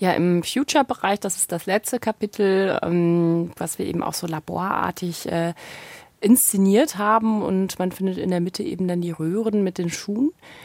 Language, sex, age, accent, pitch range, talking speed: German, female, 30-49, German, 170-195 Hz, 175 wpm